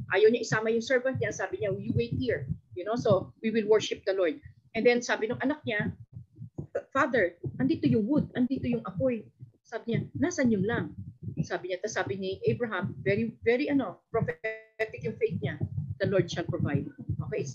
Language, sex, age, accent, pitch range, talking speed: Filipino, female, 40-59, native, 185-245 Hz, 190 wpm